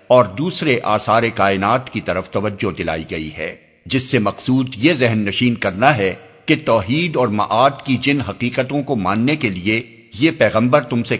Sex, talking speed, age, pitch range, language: male, 175 wpm, 60-79, 100-140 Hz, Urdu